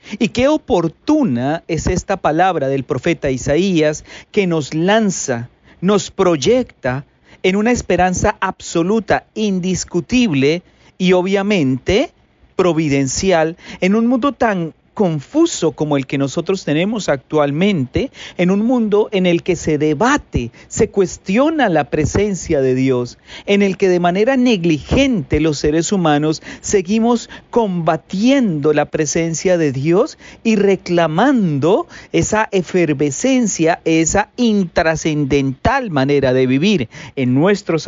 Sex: male